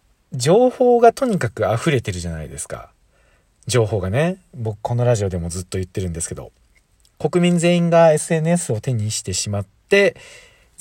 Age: 40-59